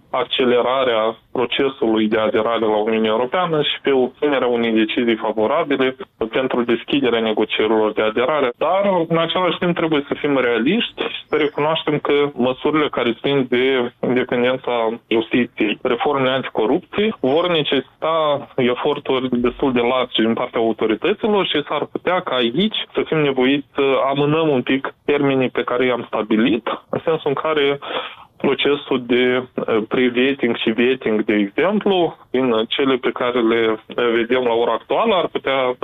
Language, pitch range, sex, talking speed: Romanian, 120-150 Hz, male, 145 wpm